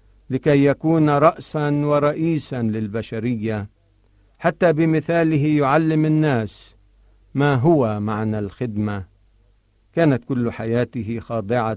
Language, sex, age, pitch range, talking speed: Arabic, male, 50-69, 105-140 Hz, 85 wpm